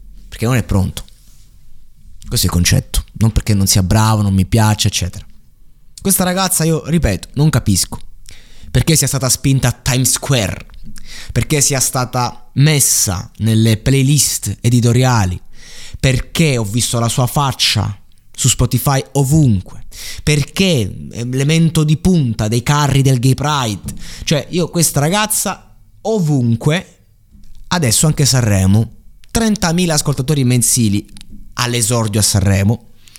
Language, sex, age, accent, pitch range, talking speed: Italian, male, 20-39, native, 100-135 Hz, 125 wpm